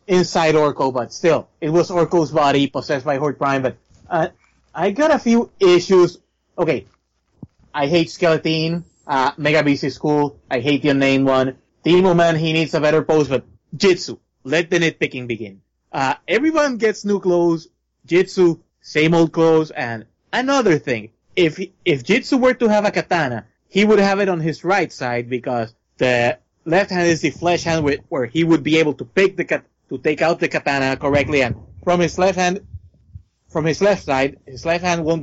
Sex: male